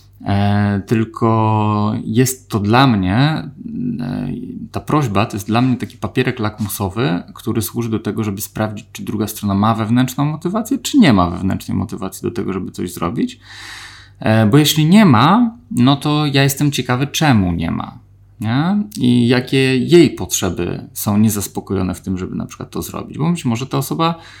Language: Polish